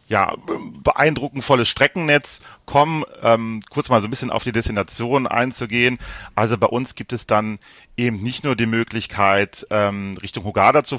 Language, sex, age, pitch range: German, male, 40-59, 100-120 Hz